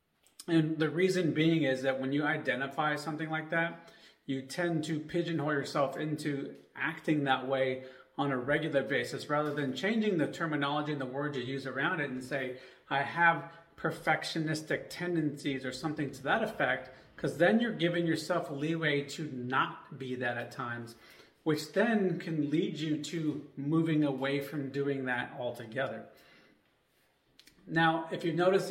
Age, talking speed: 30-49, 160 wpm